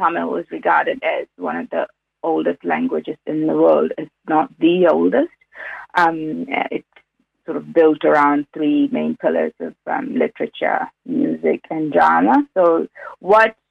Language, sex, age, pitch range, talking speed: English, female, 30-49, 170-230 Hz, 145 wpm